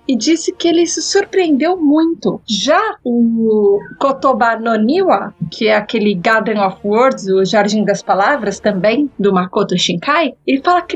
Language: Portuguese